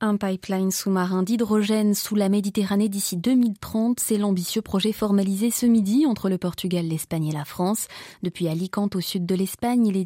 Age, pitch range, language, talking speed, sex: 20-39, 180-215 Hz, French, 175 wpm, female